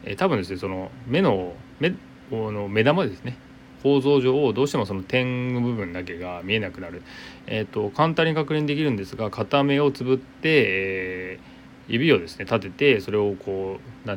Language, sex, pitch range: Japanese, male, 95-130 Hz